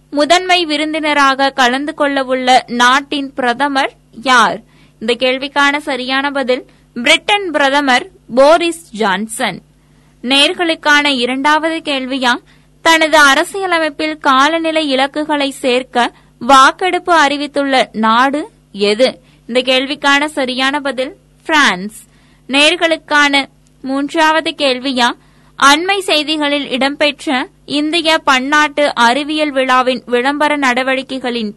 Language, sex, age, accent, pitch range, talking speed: Tamil, female, 20-39, native, 260-305 Hz, 85 wpm